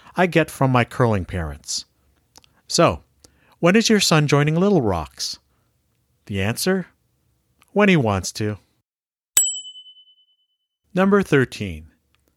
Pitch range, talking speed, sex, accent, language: 95-160 Hz, 105 wpm, male, American, English